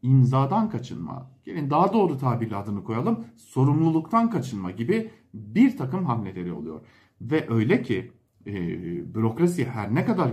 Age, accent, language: 50-69, Turkish, German